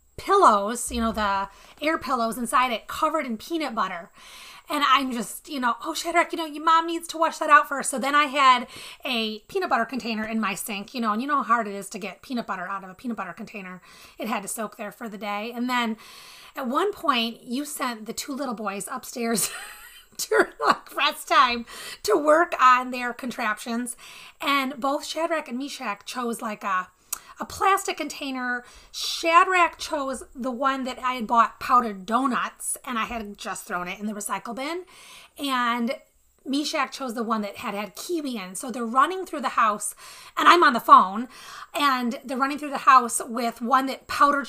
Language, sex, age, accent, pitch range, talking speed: English, female, 30-49, American, 225-290 Hz, 200 wpm